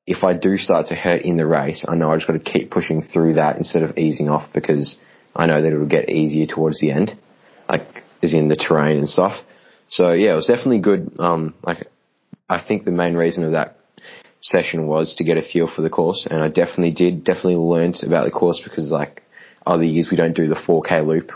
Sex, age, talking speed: male, 20-39, 235 wpm